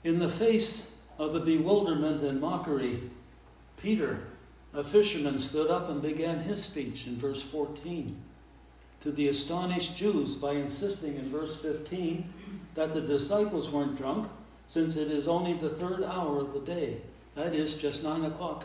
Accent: American